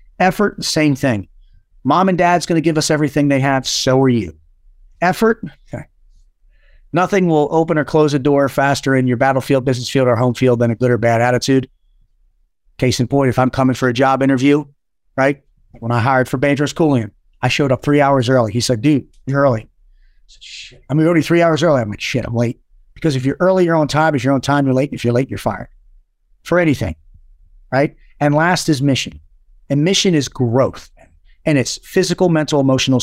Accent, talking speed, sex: American, 210 wpm, male